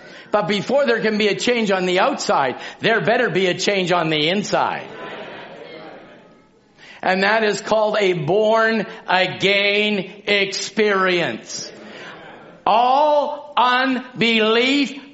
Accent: American